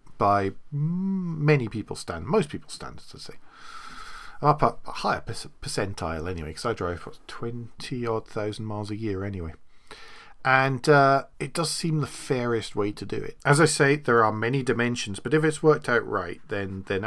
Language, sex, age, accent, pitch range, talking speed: English, male, 40-59, British, 100-135 Hz, 185 wpm